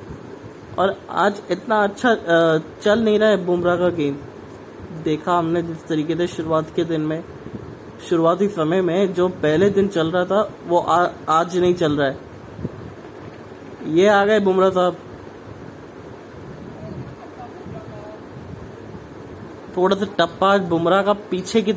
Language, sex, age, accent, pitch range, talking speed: English, male, 20-39, Indian, 160-195 Hz, 130 wpm